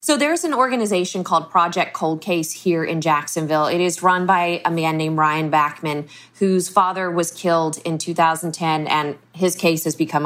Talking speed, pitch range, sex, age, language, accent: 200 wpm, 155-185 Hz, female, 20-39, English, American